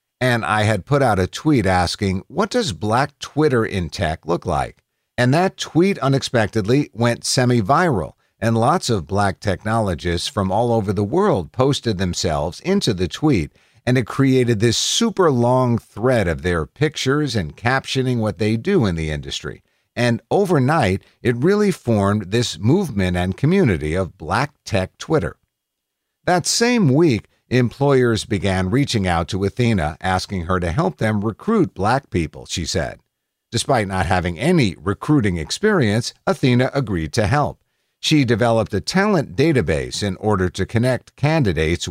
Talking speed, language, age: 155 wpm, English, 50-69